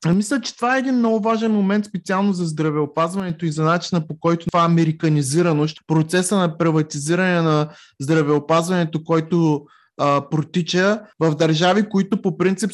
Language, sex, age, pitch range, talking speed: Bulgarian, male, 20-39, 160-210 Hz, 140 wpm